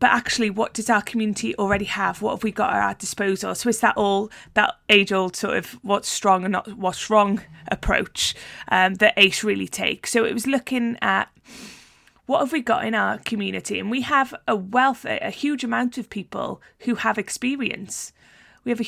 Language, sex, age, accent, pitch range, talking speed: English, female, 30-49, British, 200-230 Hz, 205 wpm